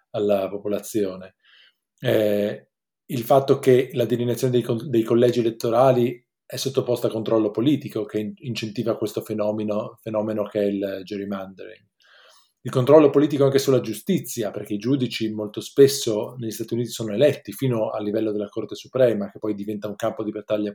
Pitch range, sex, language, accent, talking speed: 105-130 Hz, male, Italian, native, 160 wpm